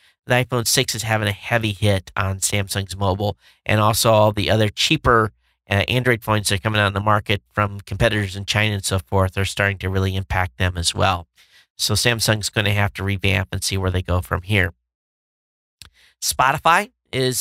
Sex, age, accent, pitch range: male, 50-69, American, 100-140 Hz